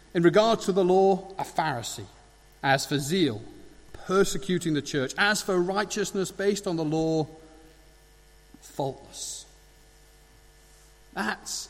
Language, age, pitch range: English, 40-59, 150-210 Hz